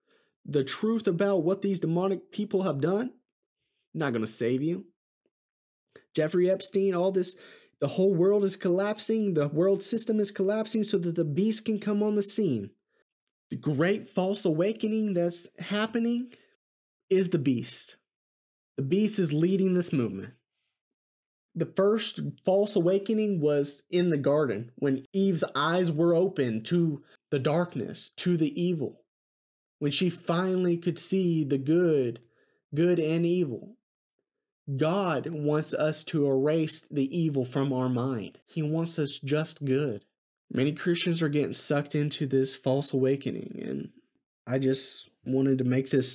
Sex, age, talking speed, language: male, 30-49, 145 wpm, English